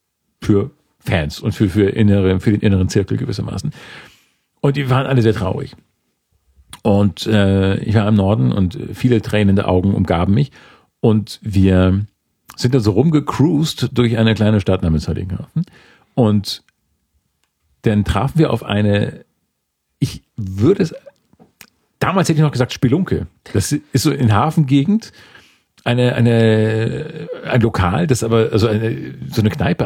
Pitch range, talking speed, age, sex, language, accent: 95-130 Hz, 145 wpm, 40-59, male, German, German